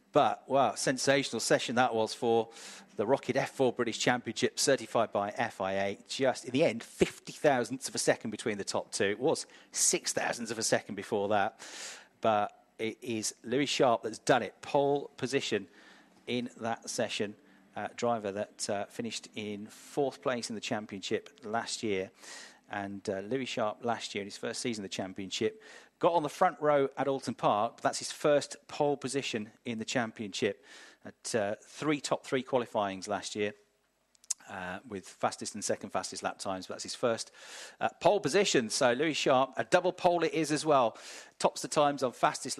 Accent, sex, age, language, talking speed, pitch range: British, male, 40-59, English, 180 wpm, 110-140 Hz